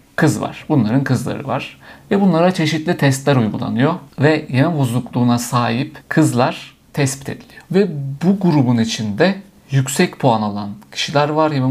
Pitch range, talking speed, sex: 115-150 Hz, 140 wpm, male